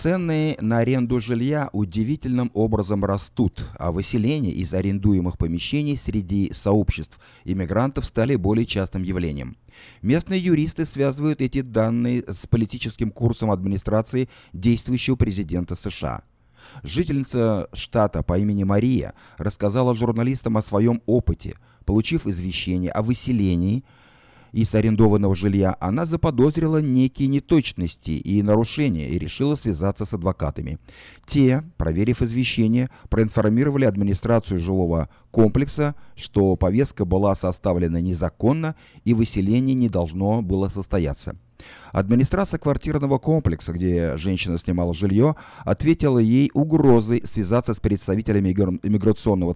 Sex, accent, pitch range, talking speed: male, native, 95-130 Hz, 110 wpm